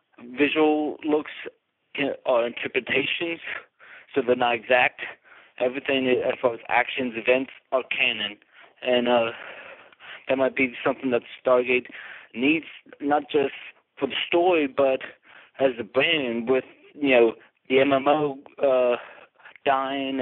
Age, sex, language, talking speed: 20-39, male, English, 120 wpm